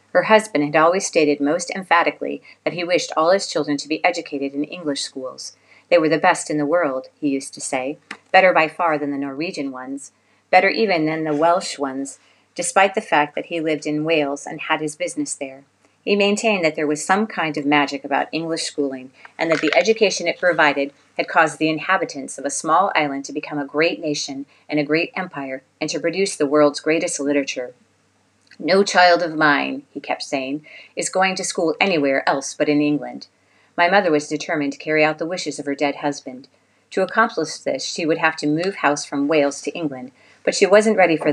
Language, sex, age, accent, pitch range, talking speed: English, female, 40-59, American, 140-170 Hz, 210 wpm